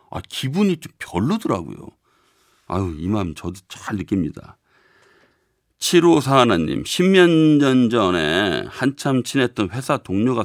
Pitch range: 100-145 Hz